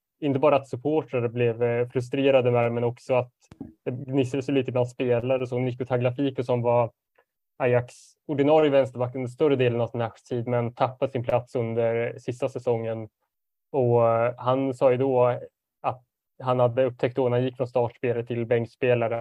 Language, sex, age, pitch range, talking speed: Swedish, male, 20-39, 120-135 Hz, 170 wpm